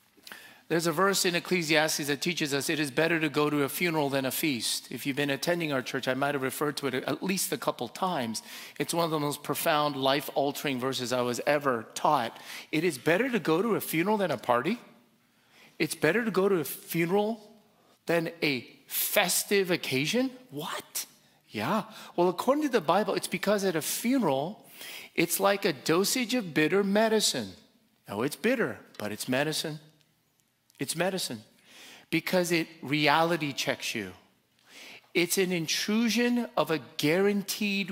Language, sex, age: English, male, 40-59